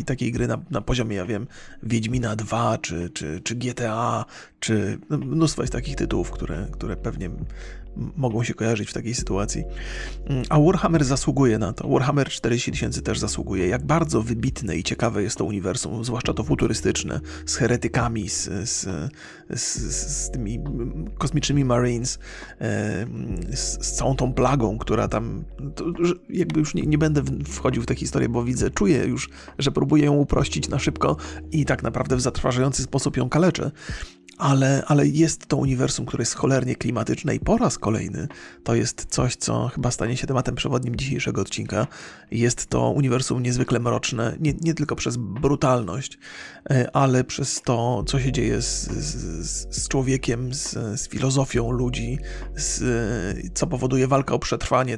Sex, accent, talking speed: male, native, 160 wpm